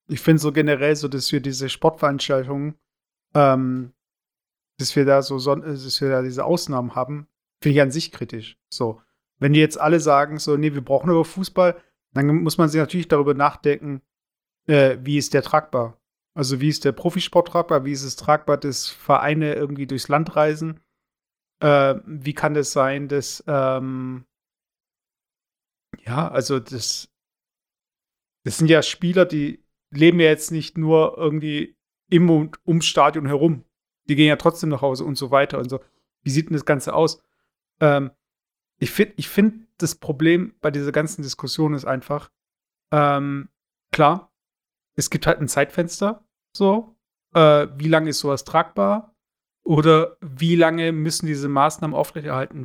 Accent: German